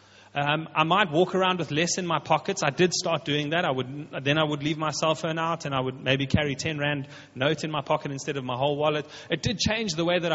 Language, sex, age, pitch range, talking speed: English, male, 30-49, 115-165 Hz, 275 wpm